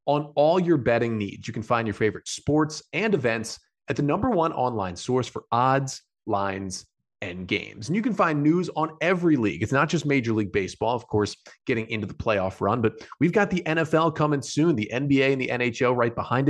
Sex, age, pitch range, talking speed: male, 30-49, 105-150 Hz, 215 wpm